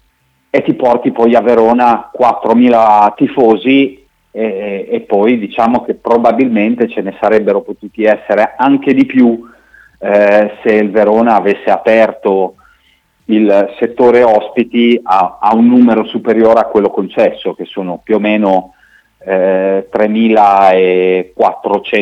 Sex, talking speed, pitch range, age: male, 125 wpm, 100-120 Hz, 40-59